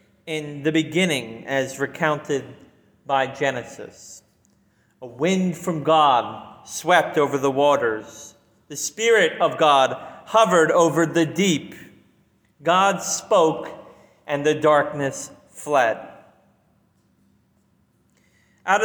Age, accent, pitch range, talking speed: 30-49, American, 150-205 Hz, 95 wpm